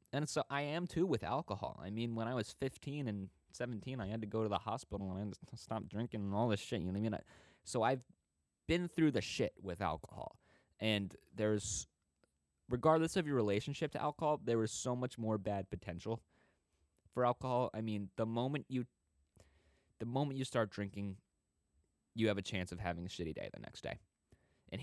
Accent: American